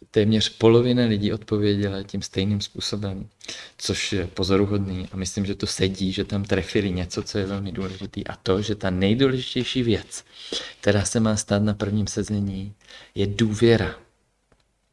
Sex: male